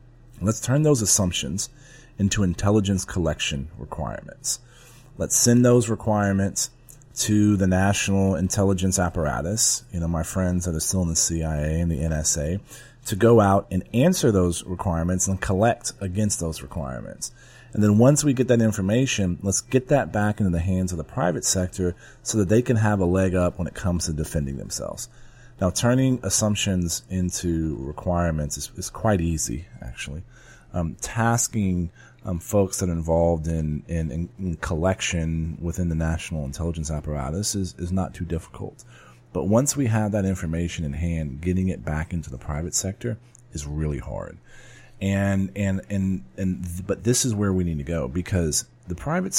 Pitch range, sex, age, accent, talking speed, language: 85-110 Hz, male, 30-49, American, 170 wpm, English